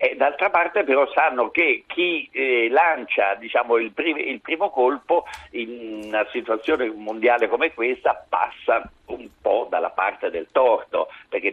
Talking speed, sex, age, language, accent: 145 wpm, male, 60-79, Italian, native